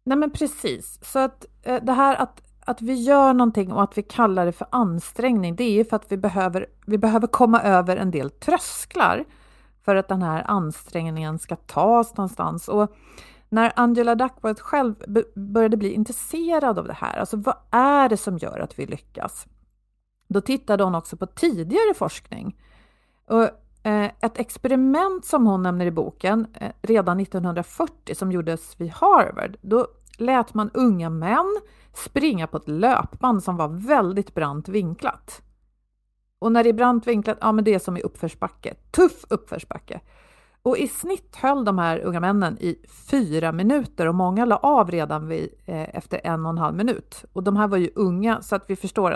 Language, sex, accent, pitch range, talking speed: Swedish, female, native, 180-245 Hz, 175 wpm